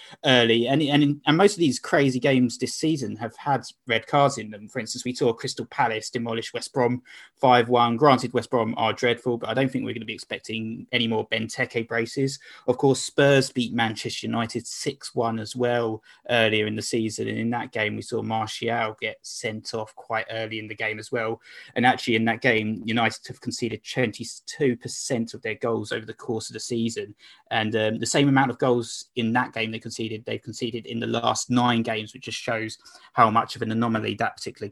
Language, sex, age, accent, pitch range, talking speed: English, male, 20-39, British, 110-125 Hz, 220 wpm